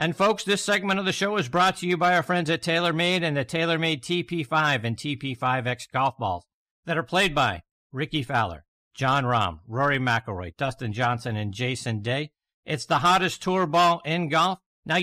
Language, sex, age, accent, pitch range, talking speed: English, male, 50-69, American, 120-165 Hz, 190 wpm